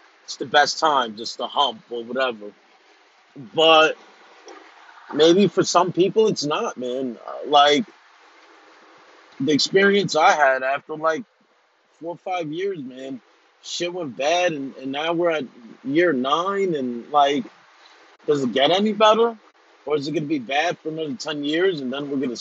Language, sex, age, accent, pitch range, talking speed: English, male, 30-49, American, 130-175 Hz, 160 wpm